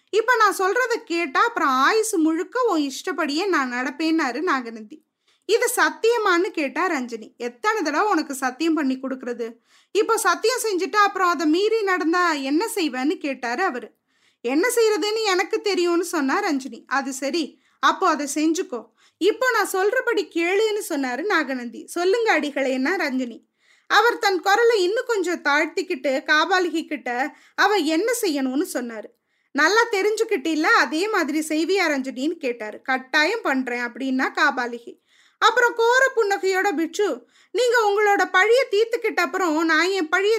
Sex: female